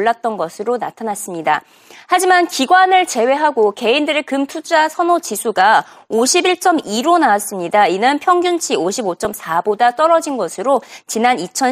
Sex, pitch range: female, 230-350 Hz